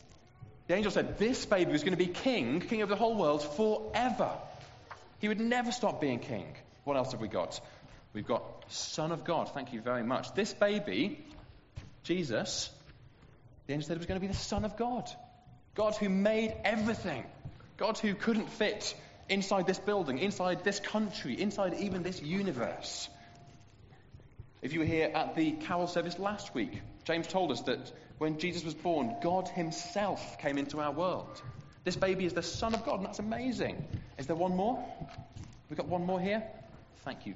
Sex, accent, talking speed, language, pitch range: male, British, 185 wpm, English, 130-205 Hz